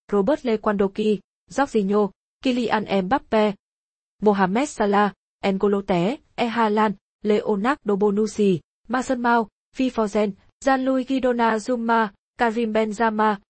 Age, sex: 20-39, female